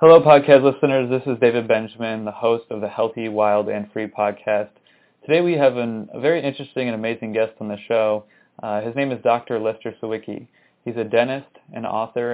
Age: 20-39